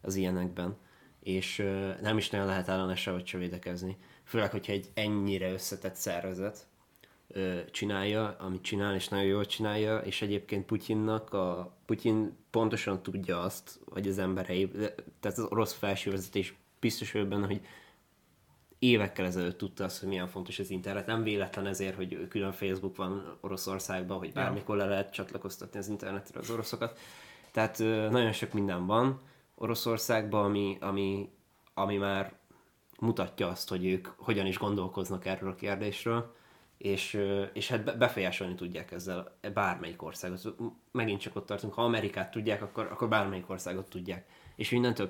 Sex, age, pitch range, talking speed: male, 20-39, 95-105 Hz, 150 wpm